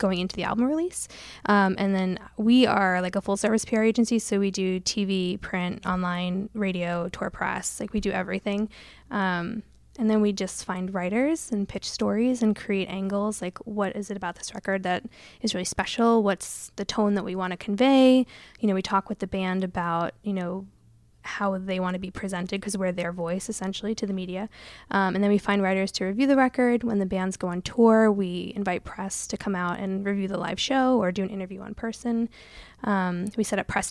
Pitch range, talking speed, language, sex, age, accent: 185-220 Hz, 220 wpm, English, female, 10-29, American